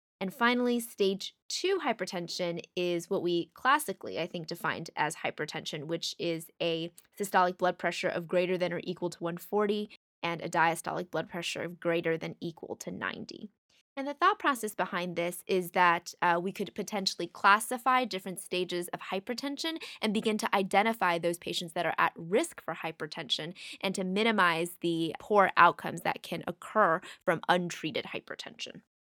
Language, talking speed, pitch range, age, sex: English, 165 wpm, 175-215 Hz, 10-29, female